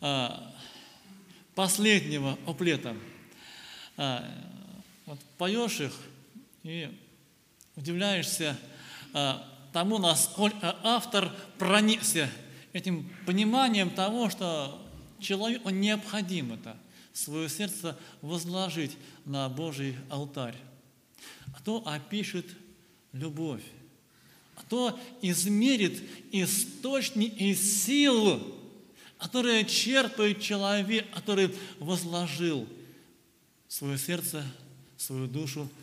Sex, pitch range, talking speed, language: male, 150-215 Hz, 70 wpm, Russian